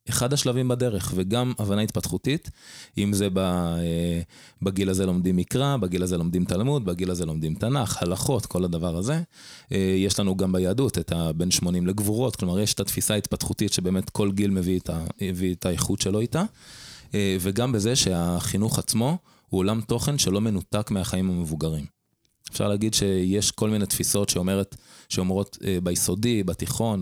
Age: 20-39